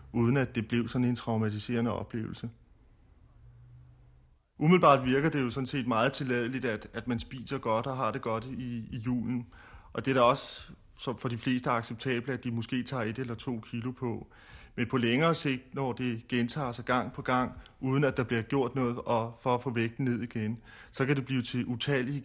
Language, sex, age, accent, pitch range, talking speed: Danish, male, 30-49, native, 110-130 Hz, 205 wpm